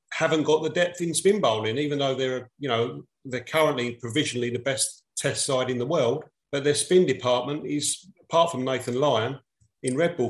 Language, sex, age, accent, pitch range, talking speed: English, male, 40-59, British, 130-155 Hz, 200 wpm